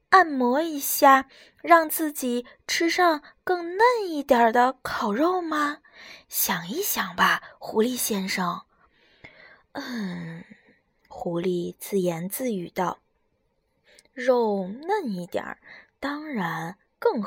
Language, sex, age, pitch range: Chinese, female, 20-39, 225-350 Hz